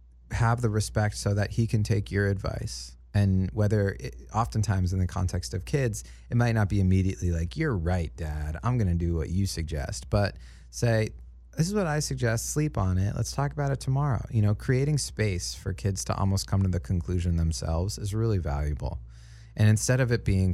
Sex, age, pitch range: male, 30-49, 80-110 Hz